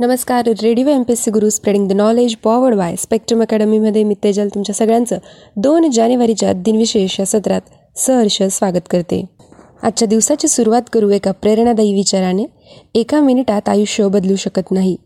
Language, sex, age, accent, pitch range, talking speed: Marathi, female, 20-39, native, 195-240 Hz, 145 wpm